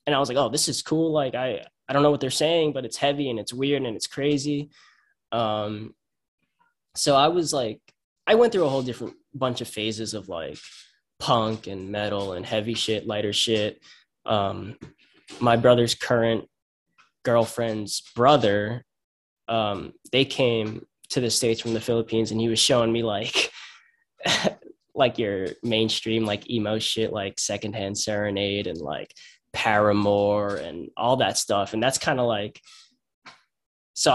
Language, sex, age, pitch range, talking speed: English, male, 10-29, 110-140 Hz, 160 wpm